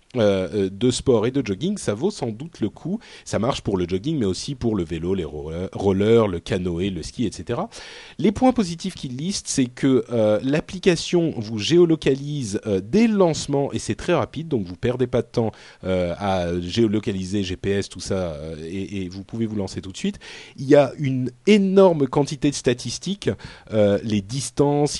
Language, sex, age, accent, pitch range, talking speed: French, male, 40-59, French, 100-140 Hz, 190 wpm